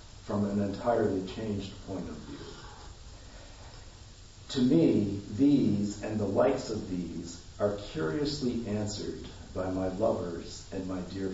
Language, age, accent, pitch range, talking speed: English, 50-69, American, 95-105 Hz, 125 wpm